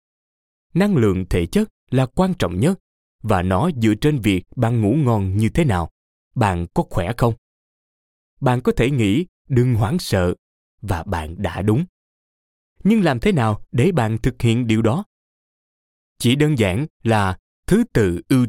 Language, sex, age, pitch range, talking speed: Vietnamese, male, 20-39, 90-140 Hz, 165 wpm